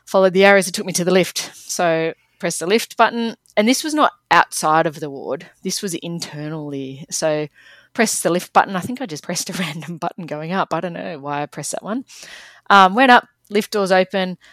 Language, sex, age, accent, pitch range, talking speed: English, female, 20-39, Australian, 160-225 Hz, 225 wpm